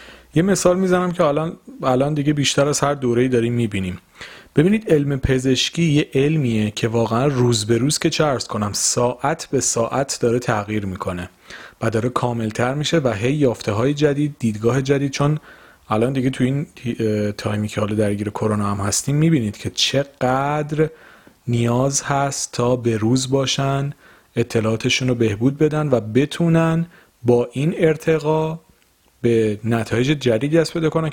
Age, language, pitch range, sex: 40-59, Persian, 115-150 Hz, male